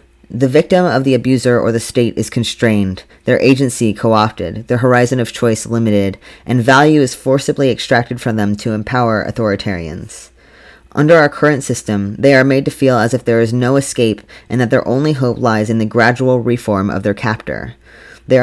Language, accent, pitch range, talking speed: English, American, 110-135 Hz, 185 wpm